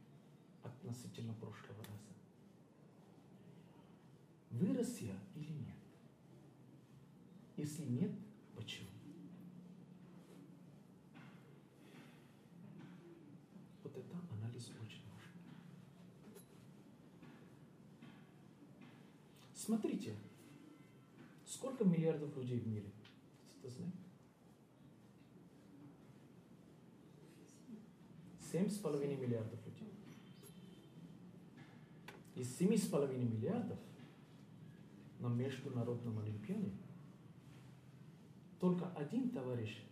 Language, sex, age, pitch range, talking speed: Russian, male, 50-69, 120-175 Hz, 55 wpm